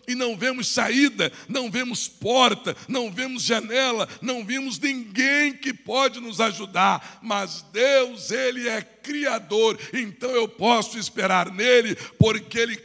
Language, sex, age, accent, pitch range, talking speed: Portuguese, male, 60-79, Brazilian, 185-240 Hz, 135 wpm